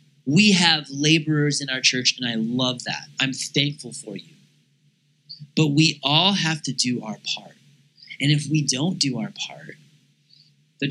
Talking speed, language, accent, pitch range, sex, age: 165 wpm, English, American, 145-185 Hz, male, 20-39